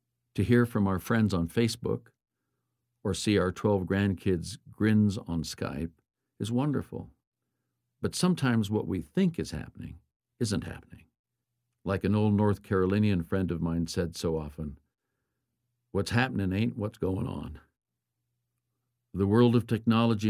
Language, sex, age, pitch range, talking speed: English, male, 60-79, 90-120 Hz, 140 wpm